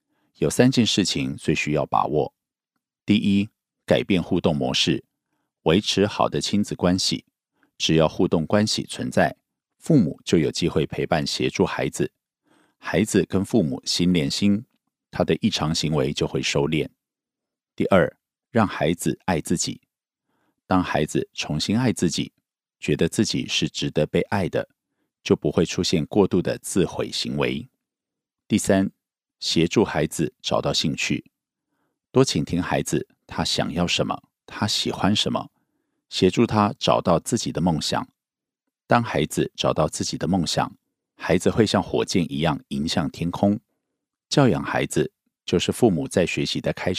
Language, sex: Korean, male